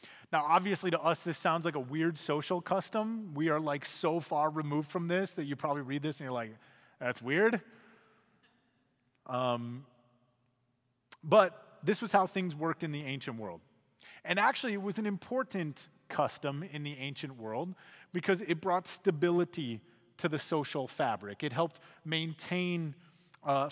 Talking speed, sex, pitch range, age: 160 wpm, male, 140-195 Hz, 30-49